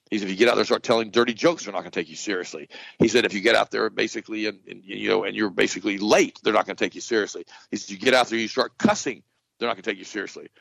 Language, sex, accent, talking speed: English, male, American, 320 wpm